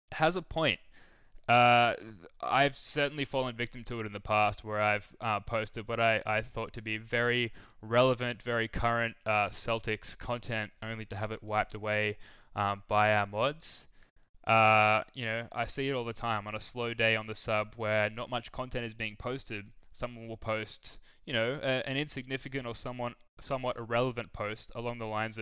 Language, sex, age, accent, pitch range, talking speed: English, male, 10-29, Australian, 110-120 Hz, 185 wpm